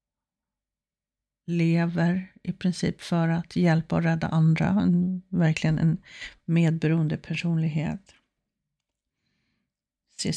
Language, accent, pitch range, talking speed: Swedish, native, 155-185 Hz, 80 wpm